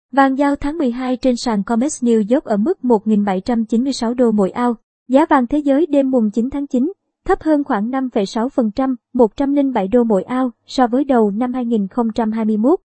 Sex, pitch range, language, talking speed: male, 220-260 Hz, Vietnamese, 175 wpm